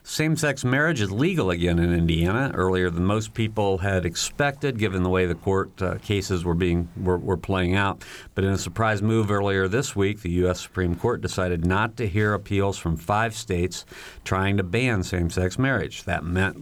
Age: 50-69